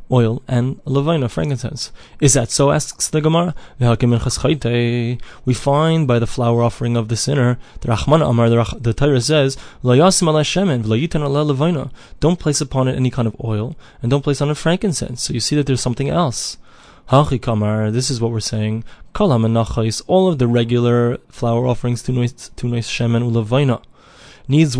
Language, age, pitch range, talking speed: English, 20-39, 115-140 Hz, 140 wpm